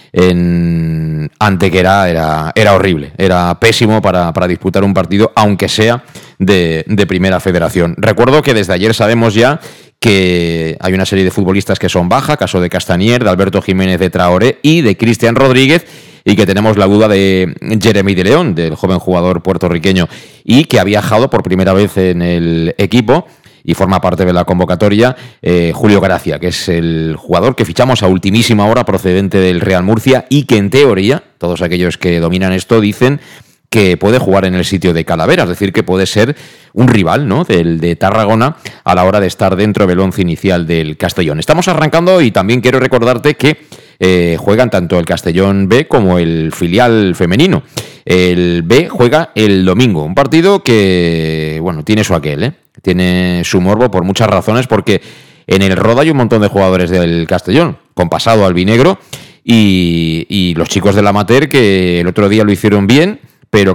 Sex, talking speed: male, 185 wpm